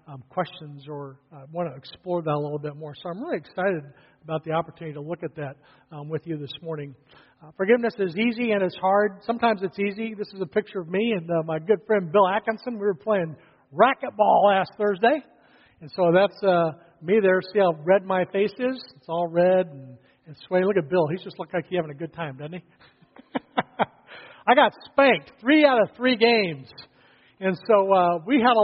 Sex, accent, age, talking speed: male, American, 50-69, 215 wpm